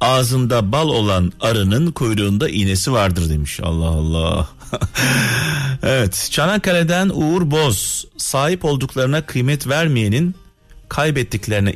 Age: 40-59